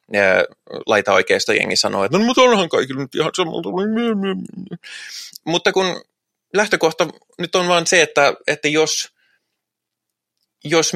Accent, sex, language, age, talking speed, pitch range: native, male, Finnish, 20-39, 135 wpm, 120-195 Hz